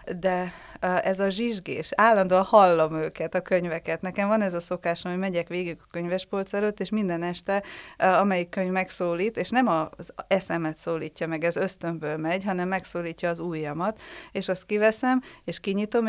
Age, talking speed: 30-49, 165 wpm